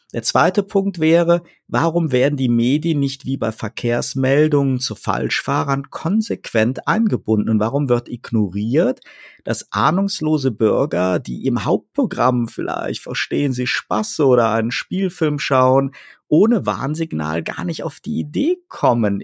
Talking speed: 130 wpm